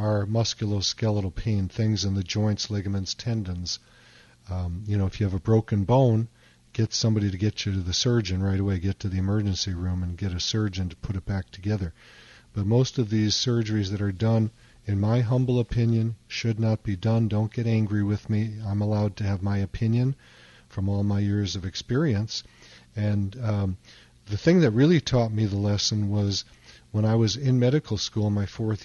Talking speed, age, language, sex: 200 wpm, 40-59, English, male